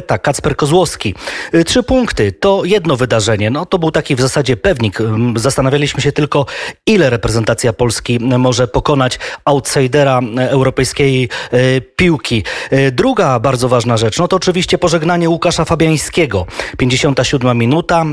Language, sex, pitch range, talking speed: Polish, male, 125-160 Hz, 130 wpm